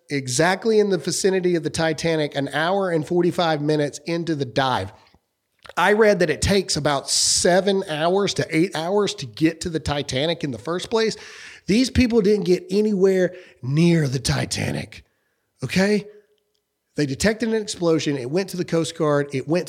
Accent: American